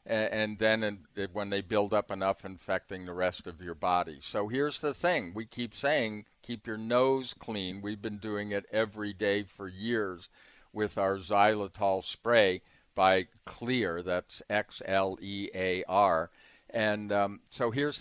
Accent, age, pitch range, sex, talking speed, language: American, 50-69, 100-135 Hz, male, 145 wpm, English